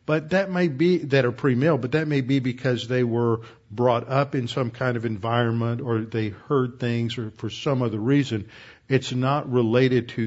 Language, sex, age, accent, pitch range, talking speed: English, male, 50-69, American, 115-135 Hz, 200 wpm